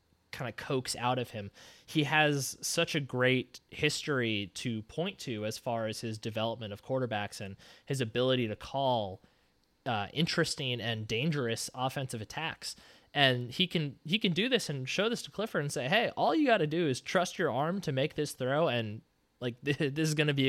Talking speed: 200 wpm